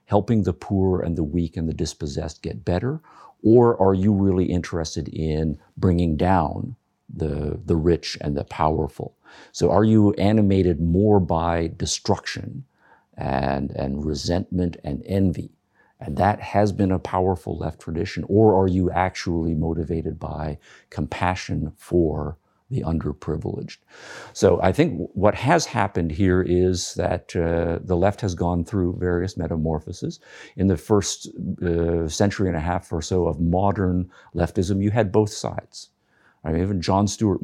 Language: English